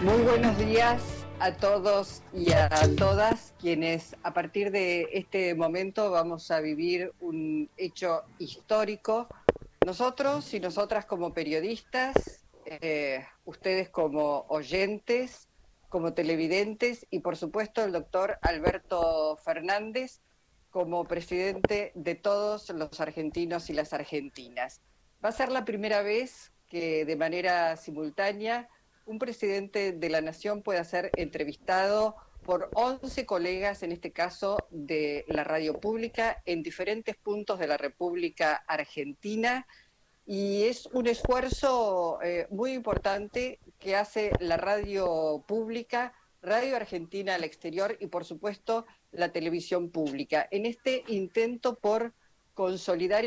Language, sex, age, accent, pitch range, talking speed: Spanish, female, 40-59, Argentinian, 165-220 Hz, 125 wpm